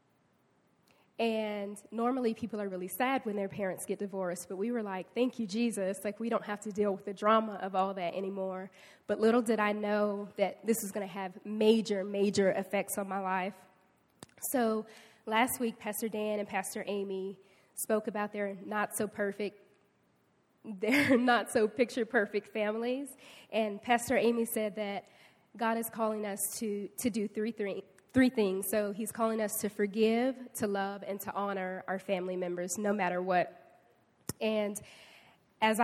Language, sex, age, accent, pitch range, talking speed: English, female, 10-29, American, 195-220 Hz, 165 wpm